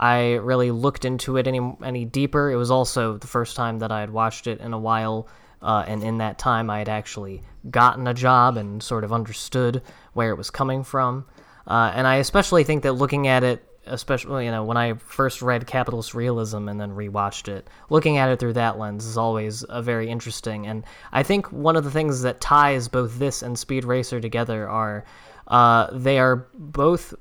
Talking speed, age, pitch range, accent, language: 210 wpm, 10-29, 115-140 Hz, American, English